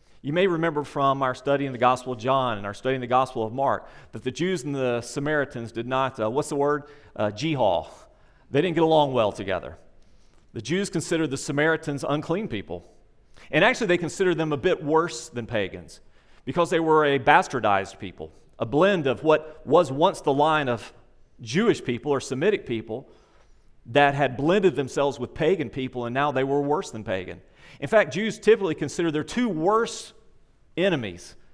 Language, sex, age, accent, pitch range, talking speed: English, male, 40-59, American, 125-160 Hz, 190 wpm